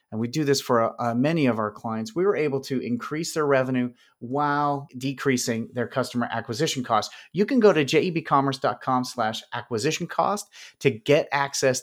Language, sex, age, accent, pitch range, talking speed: English, male, 30-49, American, 120-150 Hz, 155 wpm